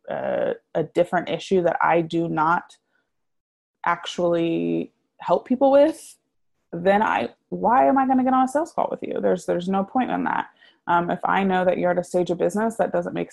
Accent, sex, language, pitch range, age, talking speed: American, female, English, 170-240 Hz, 20-39, 205 wpm